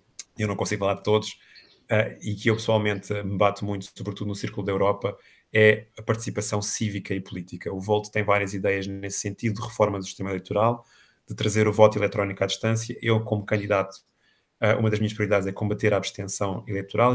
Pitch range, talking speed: 100-110 Hz, 195 wpm